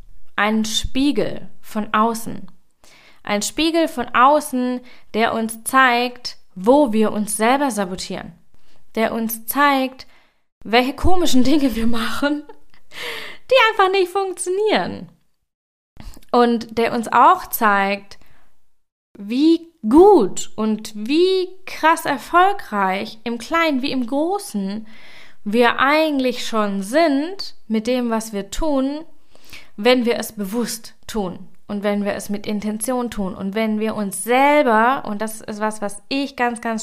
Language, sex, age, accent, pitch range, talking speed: German, female, 20-39, German, 210-275 Hz, 125 wpm